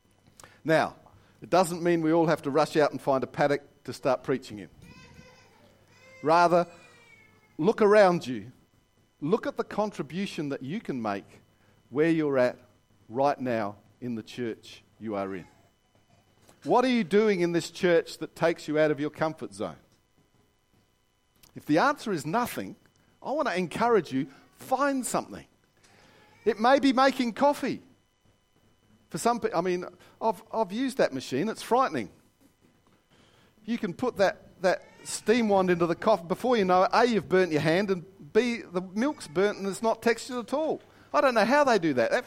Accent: Australian